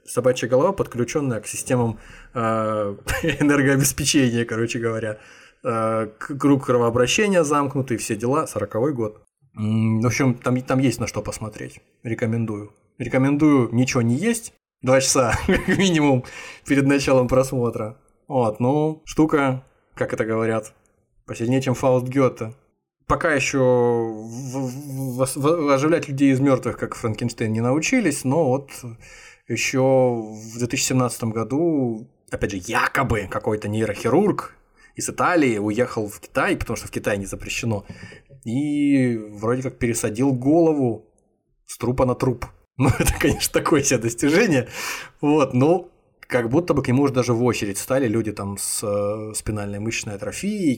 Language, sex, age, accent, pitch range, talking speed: Russian, male, 20-39, native, 110-135 Hz, 130 wpm